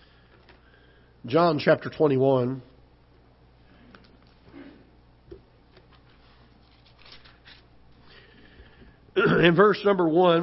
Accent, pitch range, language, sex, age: American, 145-190 Hz, English, male, 60-79